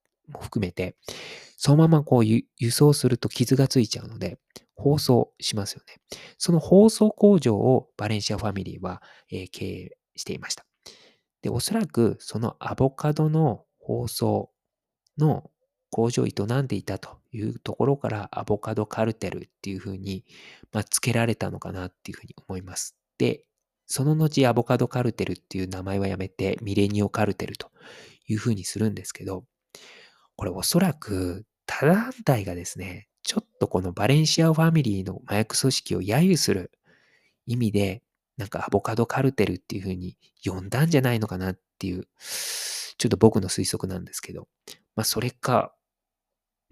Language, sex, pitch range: Japanese, male, 95-130 Hz